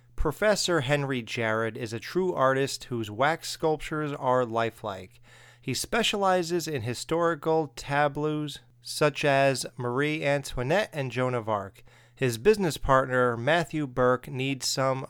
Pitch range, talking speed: 120-155 Hz, 125 wpm